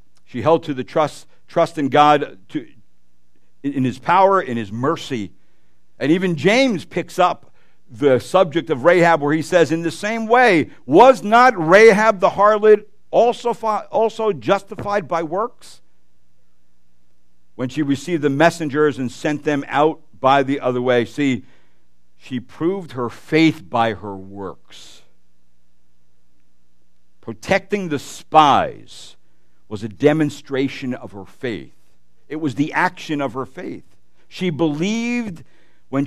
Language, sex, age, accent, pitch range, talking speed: English, male, 60-79, American, 115-180 Hz, 135 wpm